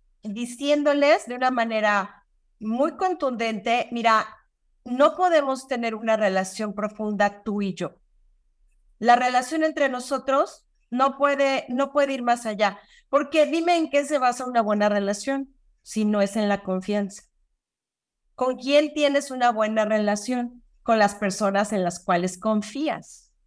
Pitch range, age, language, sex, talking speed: 210-285 Hz, 40-59, Spanish, female, 140 wpm